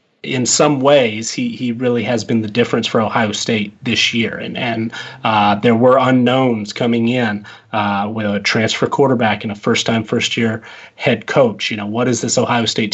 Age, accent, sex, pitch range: 30-49, American, male, 110-125 Hz